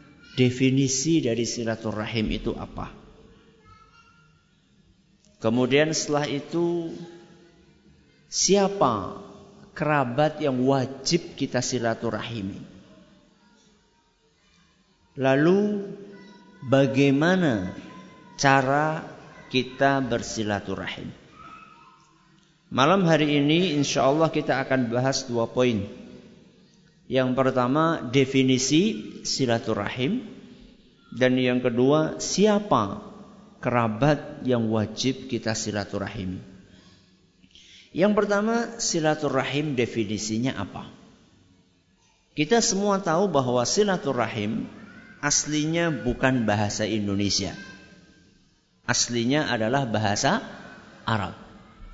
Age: 50-69